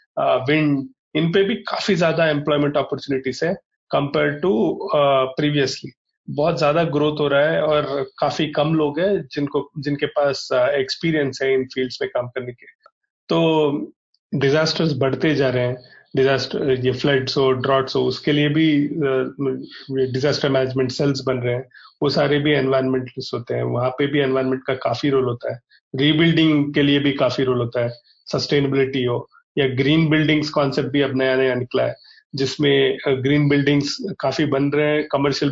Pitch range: 135-150 Hz